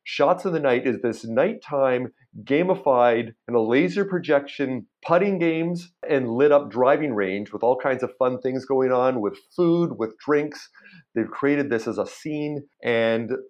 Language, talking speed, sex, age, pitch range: English, 170 wpm, male, 40-59, 115-150 Hz